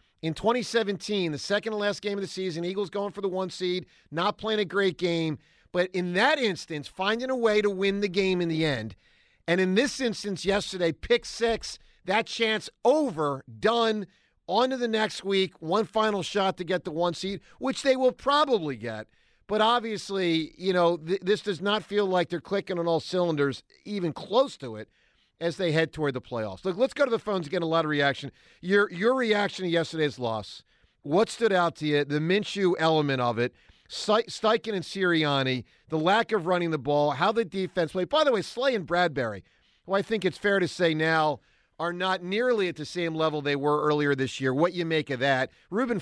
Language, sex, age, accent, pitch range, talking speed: English, male, 50-69, American, 155-205 Hz, 205 wpm